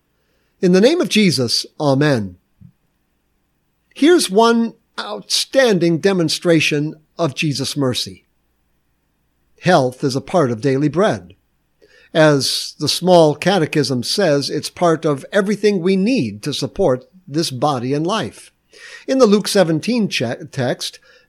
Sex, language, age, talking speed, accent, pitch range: male, English, 60-79, 120 wpm, American, 140-200 Hz